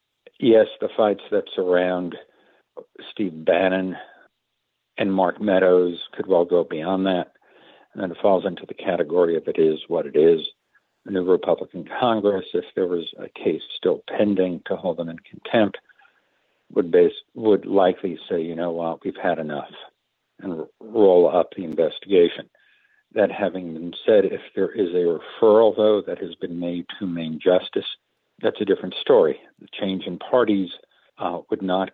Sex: male